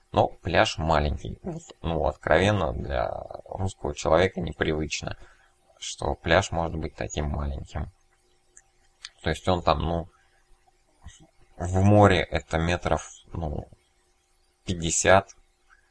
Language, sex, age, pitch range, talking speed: Russian, male, 20-39, 70-90 Hz, 100 wpm